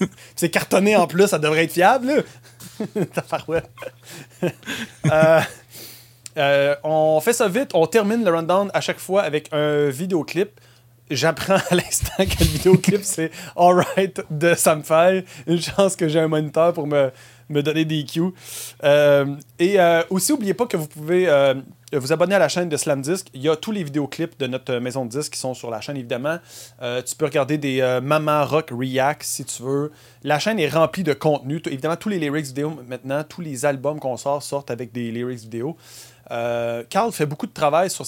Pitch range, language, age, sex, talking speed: 125-165 Hz, French, 30-49, male, 195 wpm